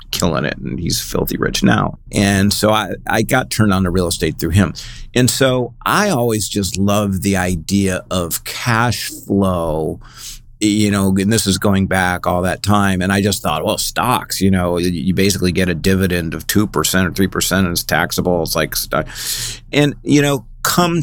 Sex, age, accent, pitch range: male, 50-69, American, 90-110 Hz